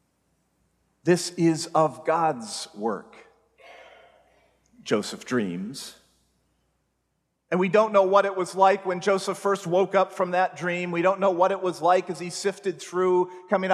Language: English